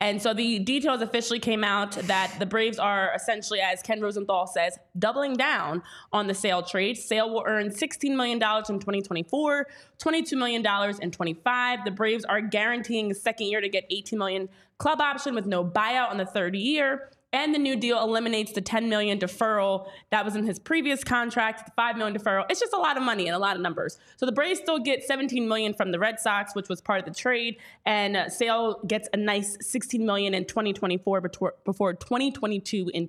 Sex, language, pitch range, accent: female, English, 200-260 Hz, American